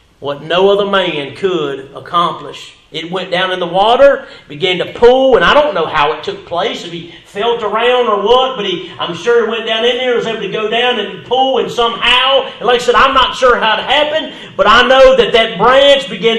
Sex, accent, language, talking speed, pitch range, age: male, American, English, 225 wpm, 170-245 Hz, 40-59